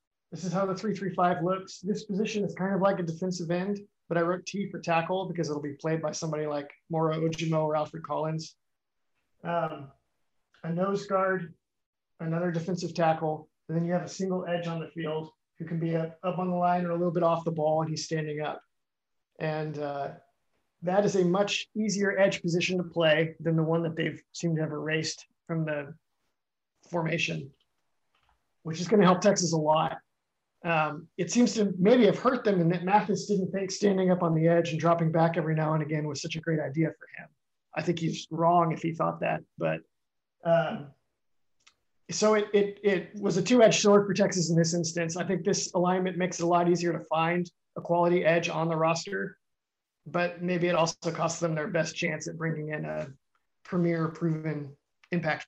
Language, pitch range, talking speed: English, 160-185 Hz, 205 wpm